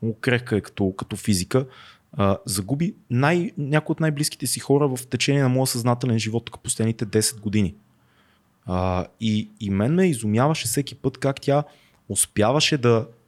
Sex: male